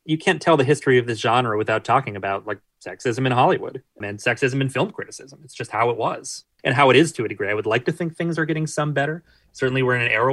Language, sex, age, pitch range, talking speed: English, male, 30-49, 115-140 Hz, 275 wpm